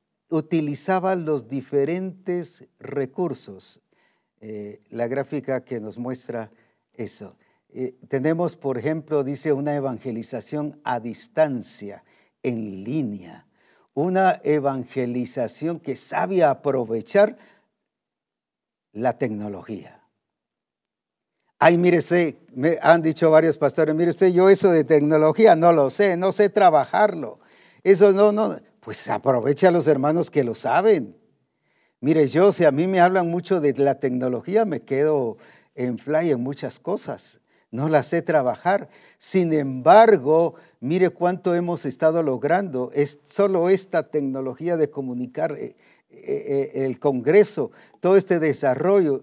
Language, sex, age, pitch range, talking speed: Spanish, male, 50-69, 135-175 Hz, 125 wpm